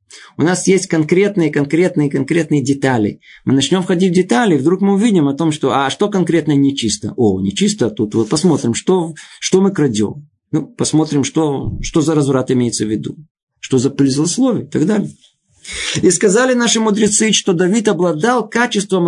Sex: male